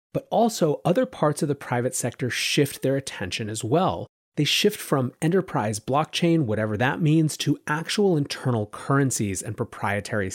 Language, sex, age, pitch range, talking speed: English, male, 30-49, 110-150 Hz, 155 wpm